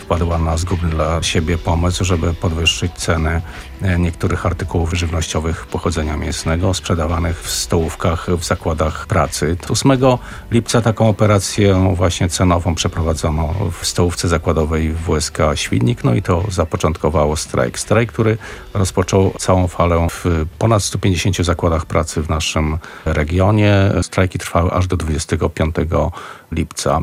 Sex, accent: male, native